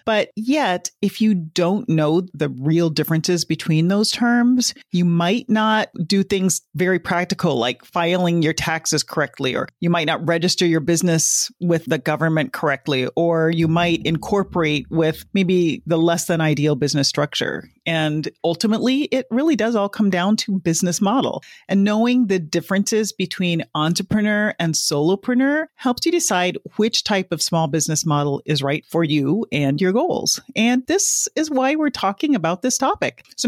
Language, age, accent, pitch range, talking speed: English, 40-59, American, 165-220 Hz, 165 wpm